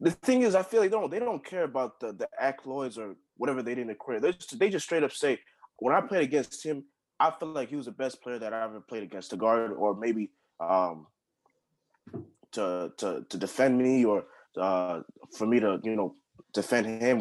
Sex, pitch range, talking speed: male, 100-130 Hz, 220 wpm